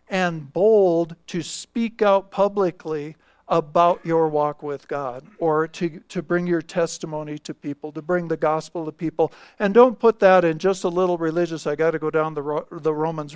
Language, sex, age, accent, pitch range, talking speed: English, male, 50-69, American, 155-195 Hz, 195 wpm